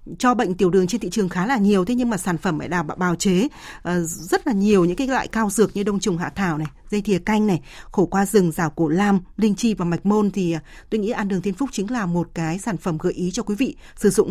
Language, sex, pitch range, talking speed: Vietnamese, female, 175-220 Hz, 290 wpm